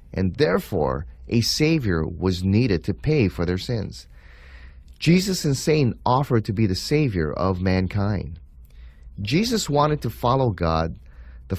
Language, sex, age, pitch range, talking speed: English, male, 30-49, 80-125 Hz, 140 wpm